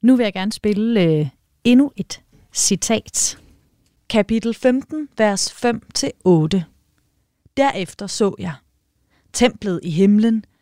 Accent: native